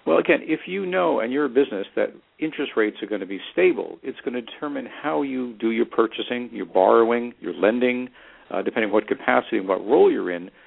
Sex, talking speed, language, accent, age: male, 225 wpm, English, American, 50-69